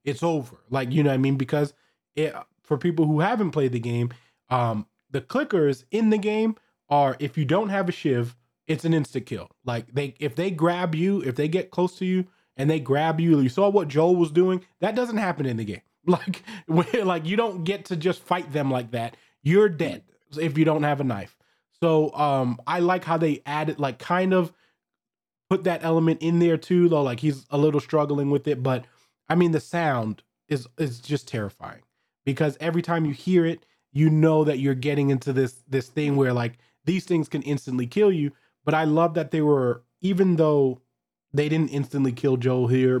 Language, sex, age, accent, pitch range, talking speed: English, male, 20-39, American, 130-165 Hz, 210 wpm